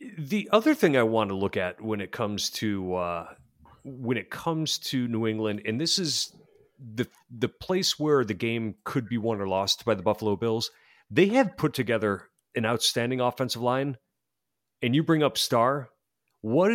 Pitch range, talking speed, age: 110-150 Hz, 185 wpm, 40-59